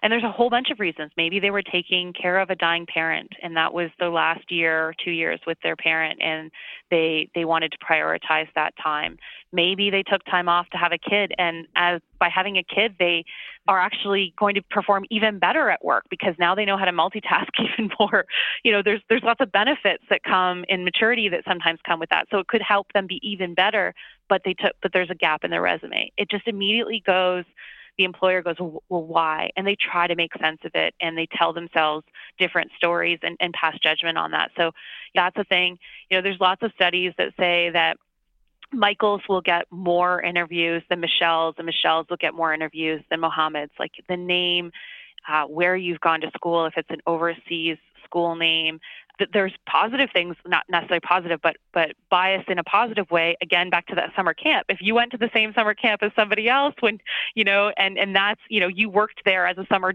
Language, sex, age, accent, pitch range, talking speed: English, female, 20-39, American, 170-200 Hz, 220 wpm